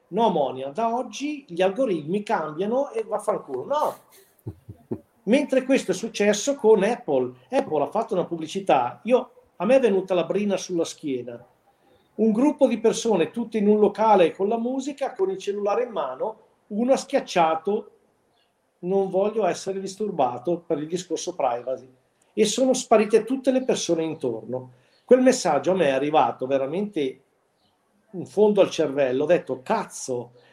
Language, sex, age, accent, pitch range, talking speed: Italian, male, 50-69, native, 155-235 Hz, 155 wpm